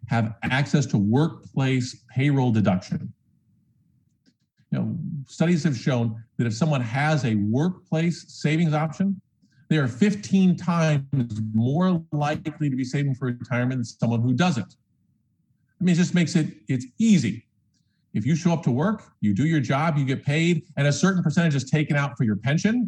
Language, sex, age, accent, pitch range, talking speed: English, male, 50-69, American, 125-170 Hz, 165 wpm